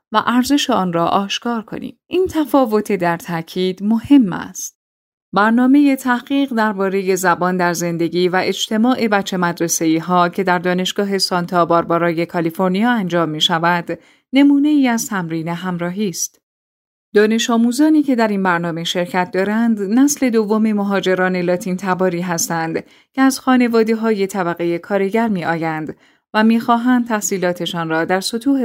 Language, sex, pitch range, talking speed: Persian, female, 175-235 Hz, 140 wpm